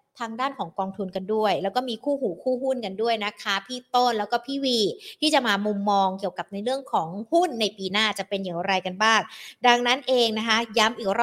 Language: Thai